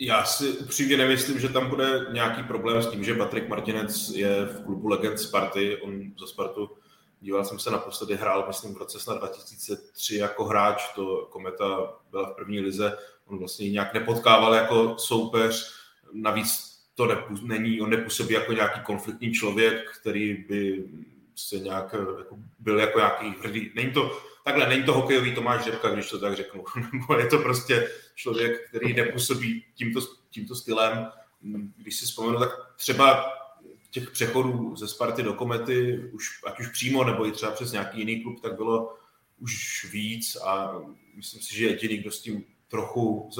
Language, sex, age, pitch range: Czech, male, 30-49, 105-120 Hz